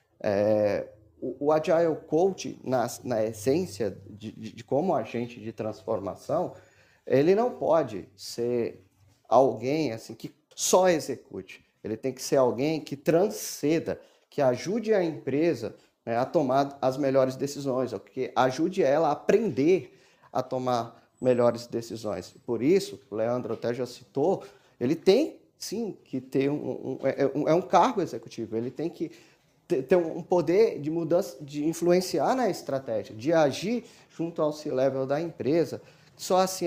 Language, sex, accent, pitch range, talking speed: Portuguese, male, Brazilian, 120-165 Hz, 145 wpm